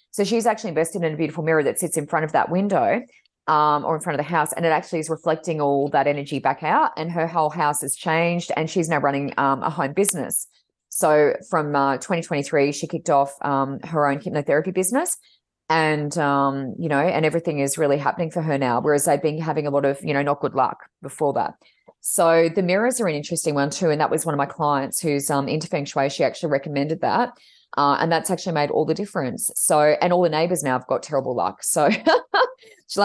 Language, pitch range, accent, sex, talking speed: English, 145-180 Hz, Australian, female, 230 wpm